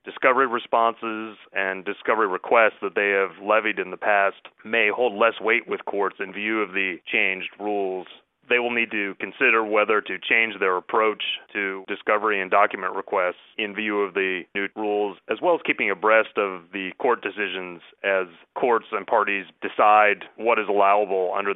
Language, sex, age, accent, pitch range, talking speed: English, male, 30-49, American, 95-110 Hz, 175 wpm